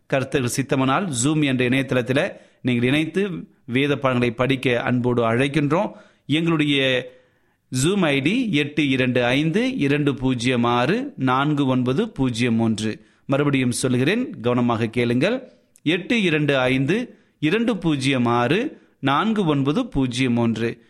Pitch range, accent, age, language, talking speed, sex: 115-140 Hz, native, 30-49, Tamil, 85 wpm, male